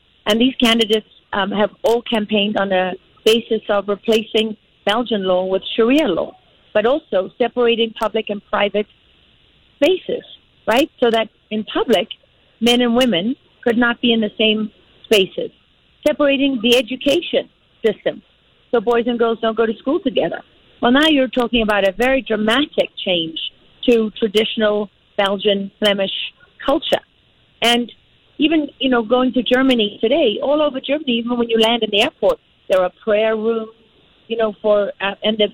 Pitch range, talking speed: 210-250 Hz, 160 wpm